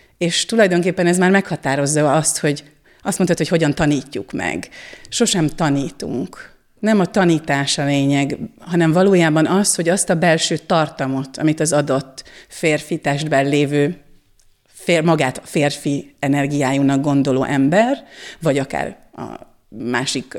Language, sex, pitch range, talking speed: Hungarian, female, 145-180 Hz, 130 wpm